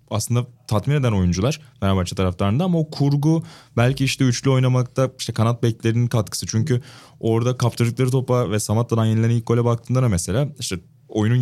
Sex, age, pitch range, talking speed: male, 20-39, 100-130 Hz, 170 wpm